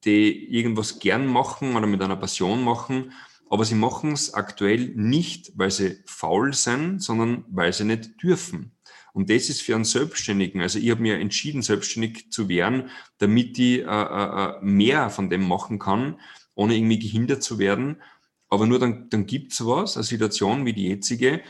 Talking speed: 175 wpm